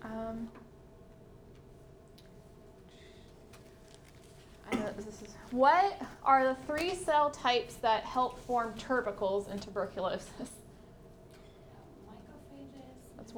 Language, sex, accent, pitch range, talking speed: English, female, American, 210-265 Hz, 80 wpm